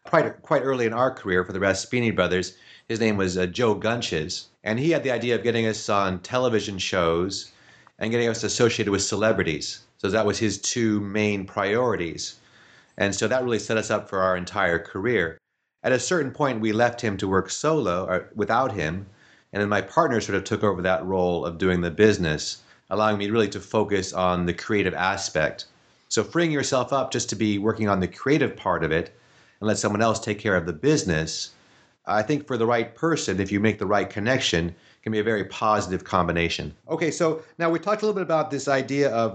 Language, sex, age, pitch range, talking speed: English, male, 30-49, 100-125 Hz, 210 wpm